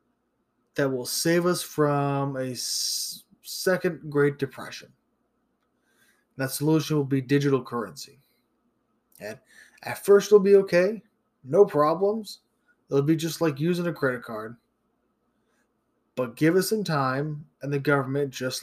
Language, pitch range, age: English, 135-160 Hz, 20-39